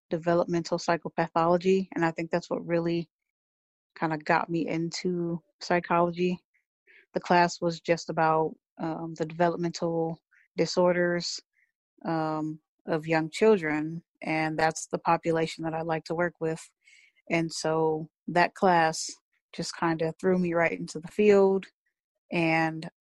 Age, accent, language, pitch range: 30-49, American, English, 160-185 Hz